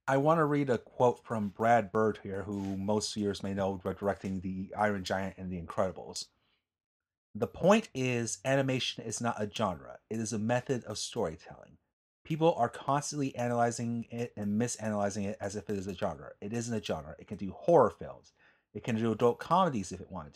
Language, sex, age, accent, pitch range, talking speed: English, male, 30-49, American, 105-130 Hz, 200 wpm